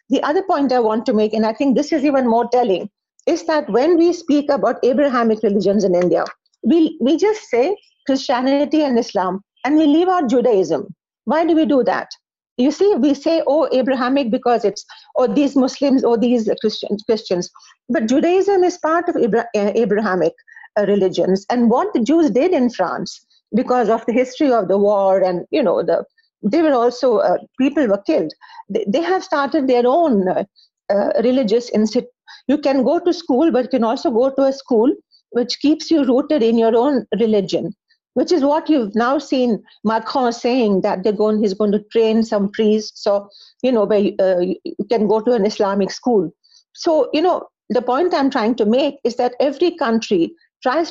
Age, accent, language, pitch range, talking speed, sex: 50-69, Indian, English, 220-305 Hz, 190 wpm, female